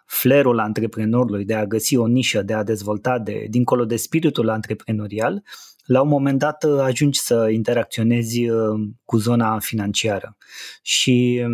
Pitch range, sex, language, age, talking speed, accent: 110-130 Hz, male, Romanian, 20-39, 135 wpm, native